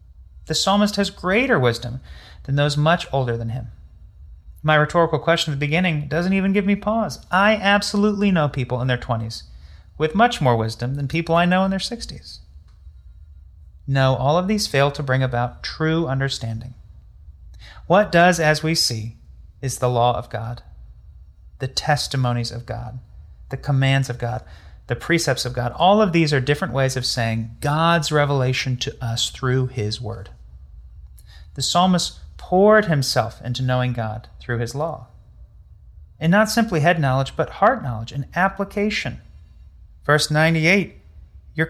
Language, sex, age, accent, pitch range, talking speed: English, male, 30-49, American, 110-165 Hz, 160 wpm